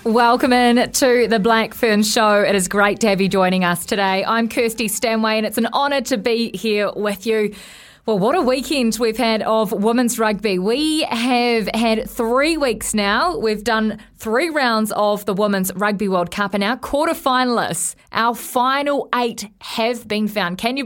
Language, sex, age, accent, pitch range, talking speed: English, female, 20-39, Australian, 185-230 Hz, 185 wpm